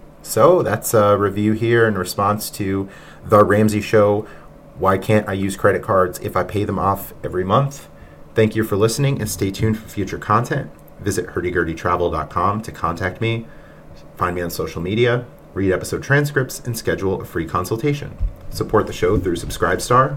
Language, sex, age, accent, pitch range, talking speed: English, male, 30-49, American, 90-115 Hz, 170 wpm